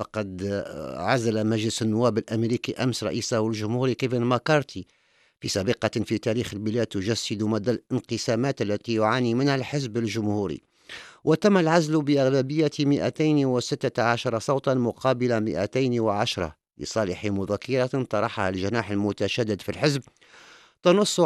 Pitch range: 110-135 Hz